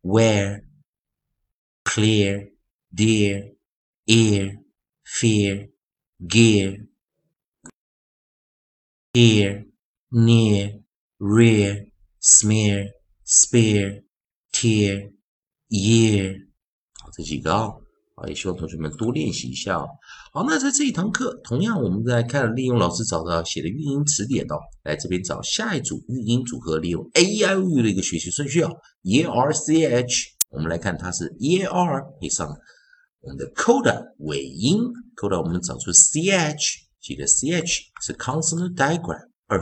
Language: Chinese